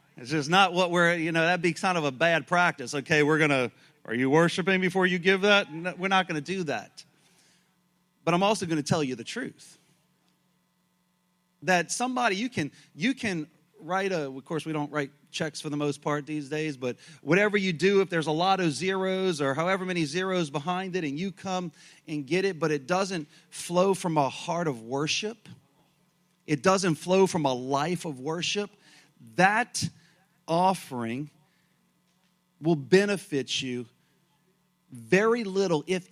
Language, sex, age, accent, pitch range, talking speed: English, male, 30-49, American, 150-180 Hz, 175 wpm